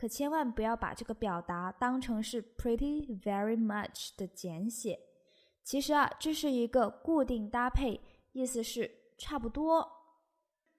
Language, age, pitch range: Chinese, 20-39, 205-285 Hz